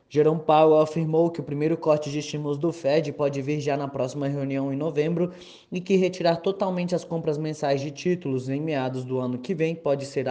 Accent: Brazilian